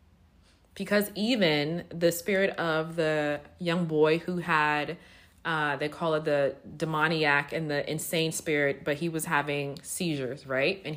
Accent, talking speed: American, 150 wpm